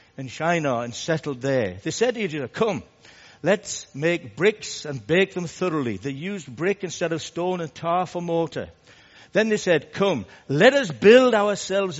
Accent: British